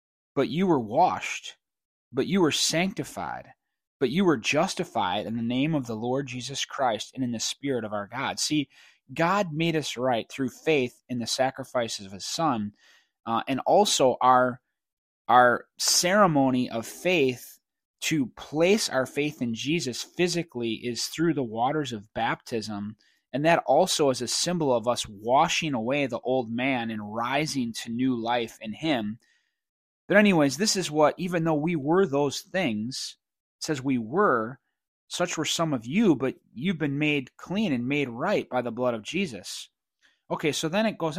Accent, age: American, 20-39